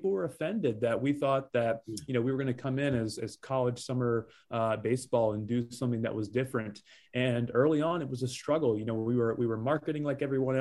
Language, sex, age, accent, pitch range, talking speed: English, male, 30-49, American, 120-140 Hz, 245 wpm